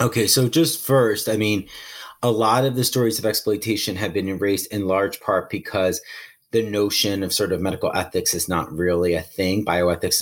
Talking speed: 195 wpm